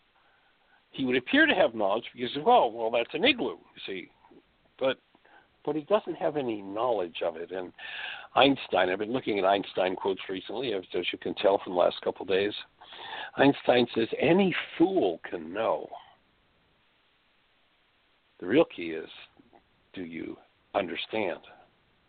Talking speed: 150 wpm